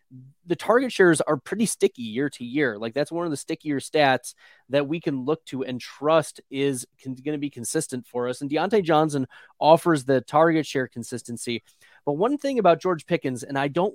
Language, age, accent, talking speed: English, 30-49, American, 200 wpm